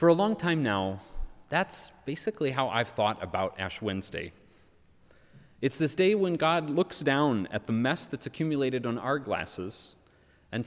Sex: male